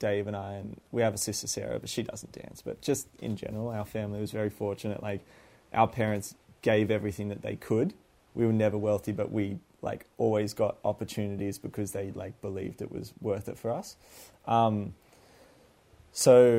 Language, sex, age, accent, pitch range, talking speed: English, male, 20-39, Australian, 100-110 Hz, 190 wpm